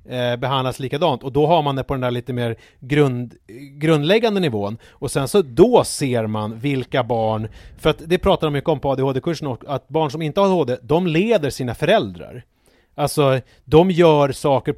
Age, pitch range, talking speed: 30-49, 125-165 Hz, 180 wpm